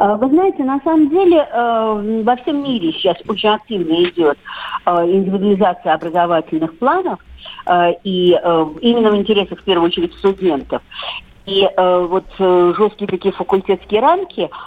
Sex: female